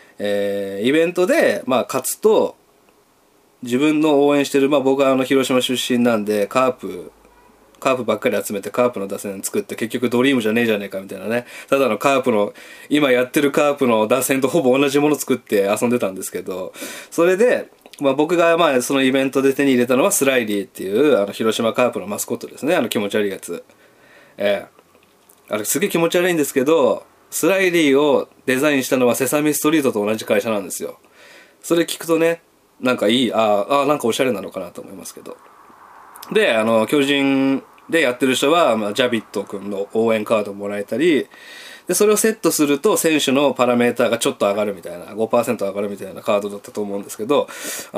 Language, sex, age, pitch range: Japanese, male, 20-39, 110-150 Hz